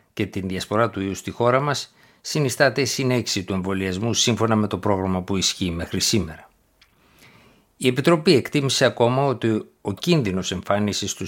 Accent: native